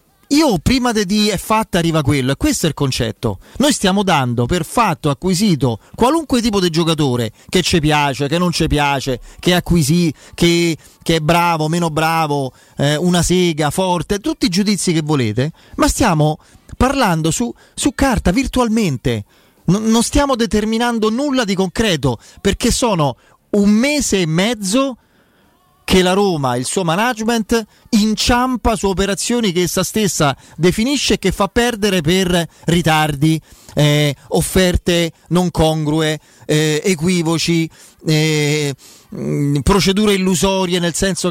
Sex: male